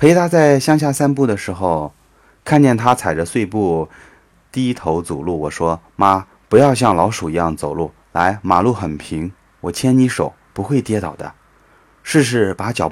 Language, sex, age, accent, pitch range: Chinese, male, 30-49, native, 85-120 Hz